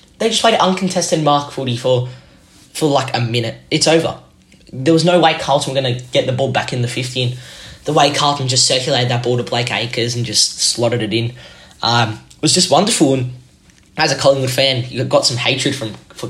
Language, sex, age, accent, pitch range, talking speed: English, male, 10-29, Australian, 125-155 Hz, 215 wpm